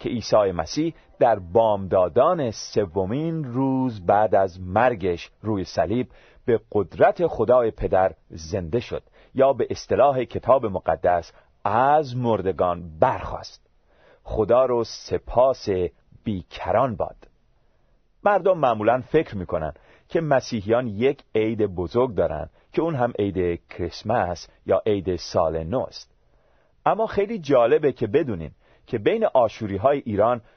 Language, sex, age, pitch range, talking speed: Persian, male, 40-59, 95-130 Hz, 120 wpm